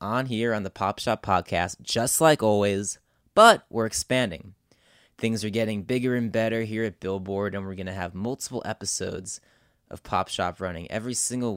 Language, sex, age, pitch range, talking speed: English, male, 20-39, 100-120 Hz, 180 wpm